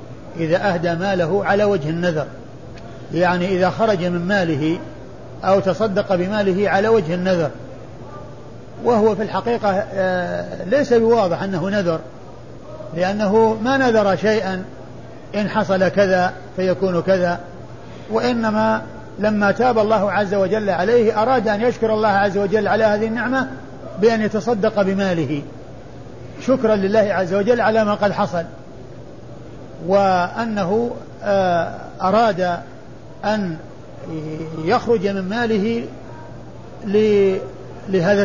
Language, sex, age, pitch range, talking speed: Arabic, male, 50-69, 175-215 Hz, 105 wpm